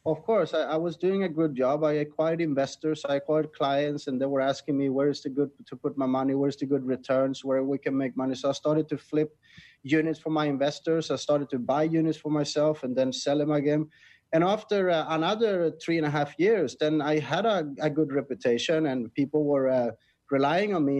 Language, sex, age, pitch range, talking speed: English, male, 30-49, 135-160 Hz, 235 wpm